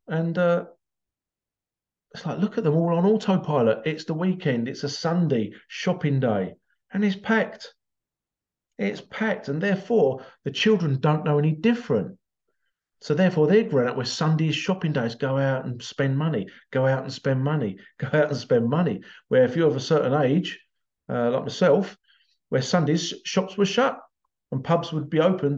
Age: 50-69